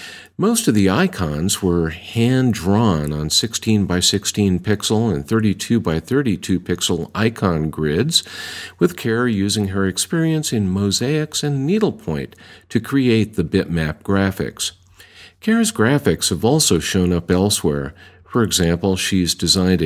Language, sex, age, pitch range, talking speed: English, male, 50-69, 90-115 Hz, 130 wpm